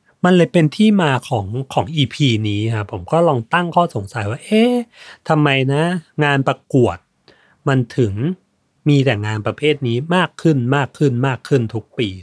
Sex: male